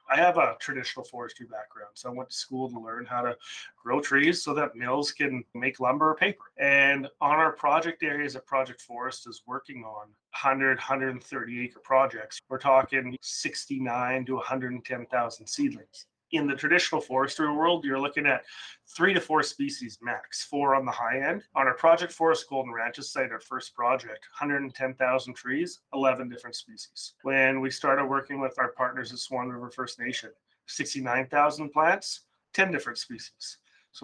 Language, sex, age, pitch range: English, male, 30-49, 125-150 Hz